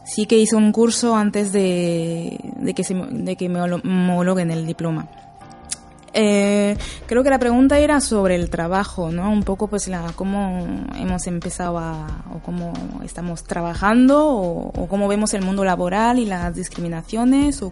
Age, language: 20-39, Spanish